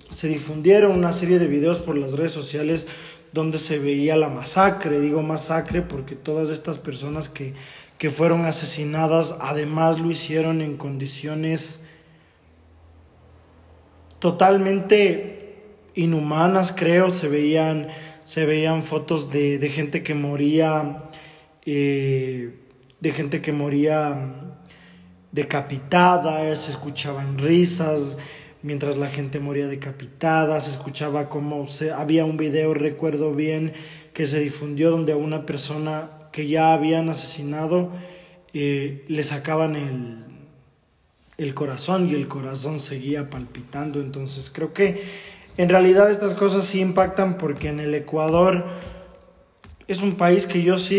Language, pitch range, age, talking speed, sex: Spanish, 145-165 Hz, 20-39, 125 wpm, male